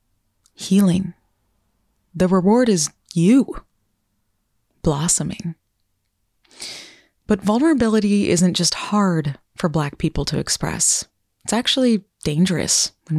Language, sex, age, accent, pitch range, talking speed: English, female, 20-39, American, 150-205 Hz, 90 wpm